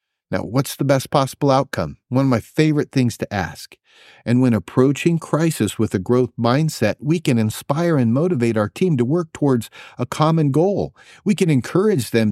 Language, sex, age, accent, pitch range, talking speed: English, male, 50-69, American, 115-155 Hz, 185 wpm